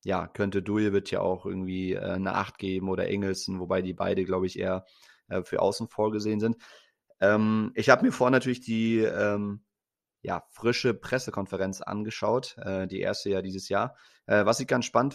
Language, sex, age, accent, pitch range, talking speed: German, male, 30-49, German, 100-115 Hz, 175 wpm